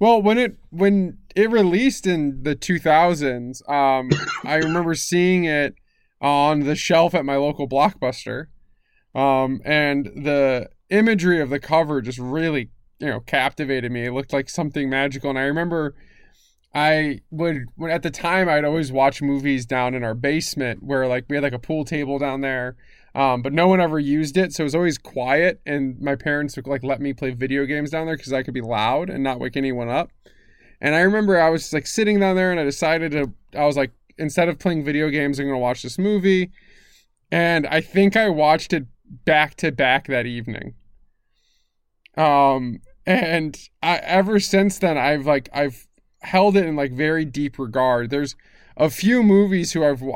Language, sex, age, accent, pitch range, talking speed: English, male, 20-39, American, 135-170 Hz, 190 wpm